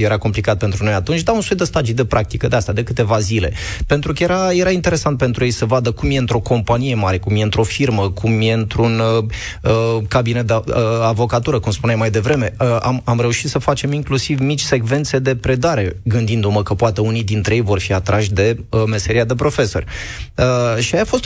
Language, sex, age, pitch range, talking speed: Romanian, male, 20-39, 110-145 Hz, 200 wpm